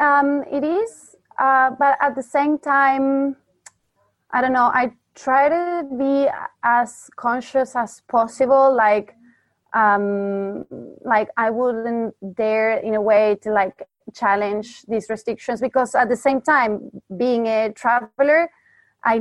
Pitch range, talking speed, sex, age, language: 210-255 Hz, 135 wpm, female, 20-39, English